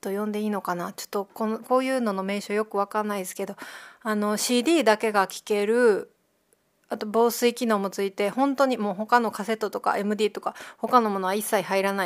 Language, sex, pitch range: Japanese, female, 195-230 Hz